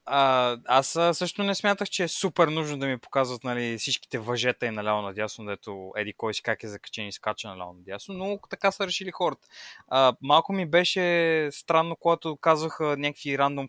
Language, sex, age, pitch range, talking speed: Bulgarian, male, 20-39, 115-160 Hz, 195 wpm